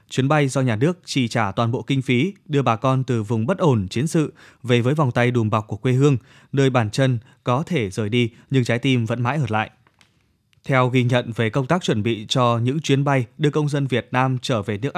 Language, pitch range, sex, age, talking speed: Vietnamese, 120-145 Hz, male, 20-39, 250 wpm